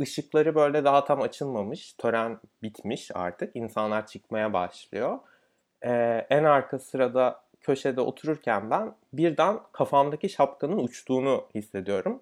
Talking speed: 115 wpm